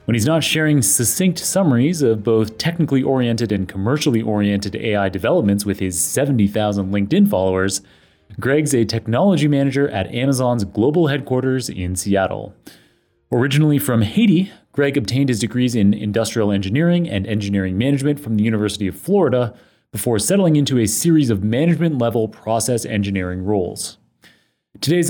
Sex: male